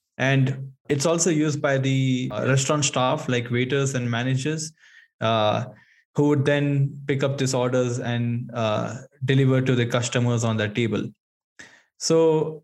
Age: 20-39